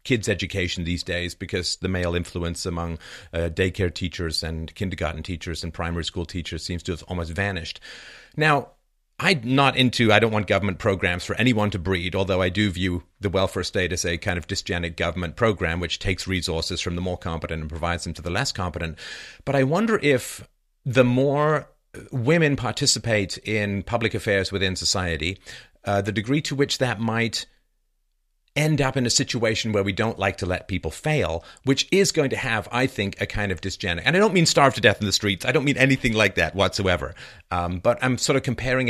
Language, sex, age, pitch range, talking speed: English, male, 40-59, 90-120 Hz, 205 wpm